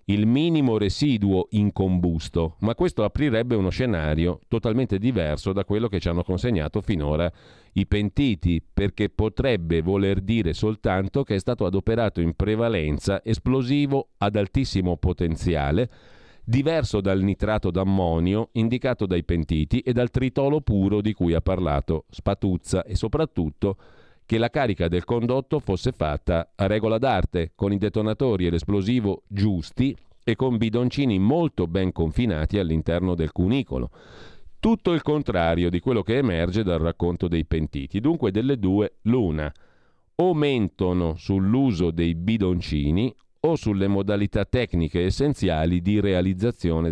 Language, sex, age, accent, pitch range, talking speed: Italian, male, 40-59, native, 85-120 Hz, 135 wpm